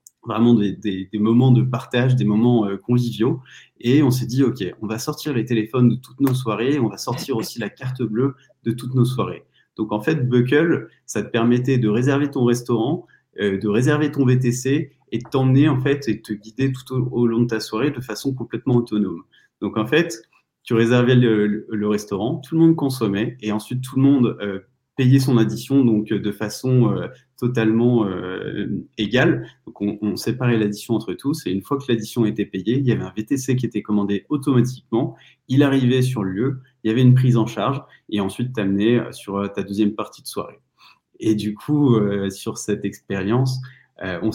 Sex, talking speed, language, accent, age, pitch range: male, 210 wpm, French, French, 30-49, 105-130 Hz